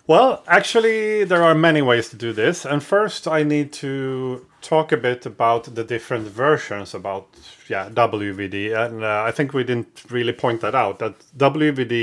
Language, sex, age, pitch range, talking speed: English, male, 30-49, 105-145 Hz, 180 wpm